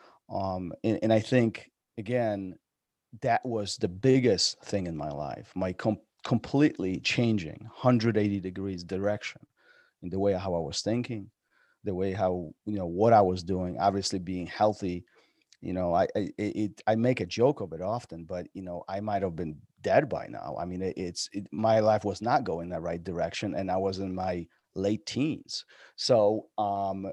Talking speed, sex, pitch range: 190 wpm, male, 90-110 Hz